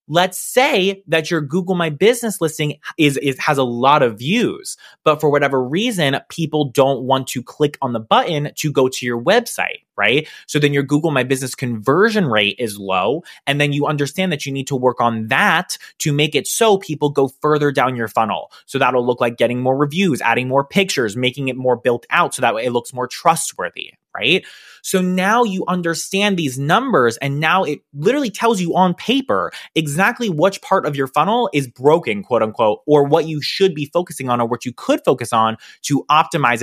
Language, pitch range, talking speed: English, 135-190 Hz, 205 wpm